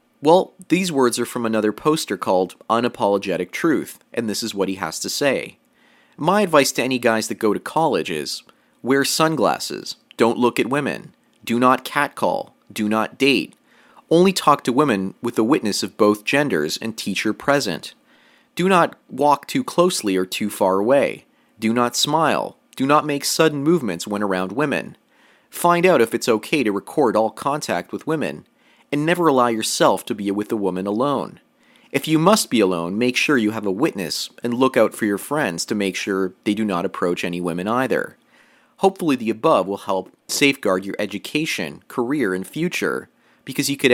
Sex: male